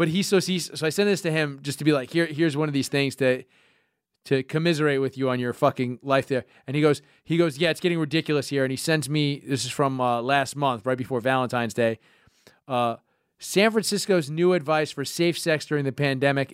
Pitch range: 135-180 Hz